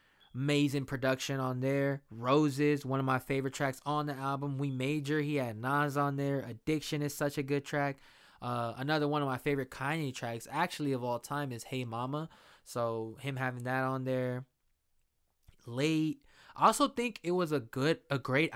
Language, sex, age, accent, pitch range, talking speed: English, male, 20-39, American, 115-140 Hz, 185 wpm